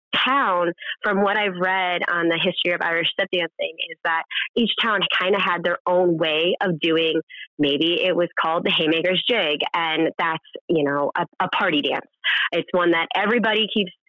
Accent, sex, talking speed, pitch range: American, female, 190 wpm, 170-210 Hz